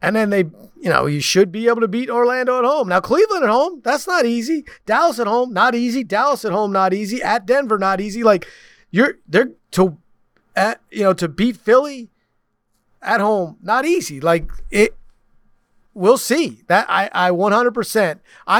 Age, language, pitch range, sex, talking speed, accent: 30-49, English, 155-210 Hz, male, 185 wpm, American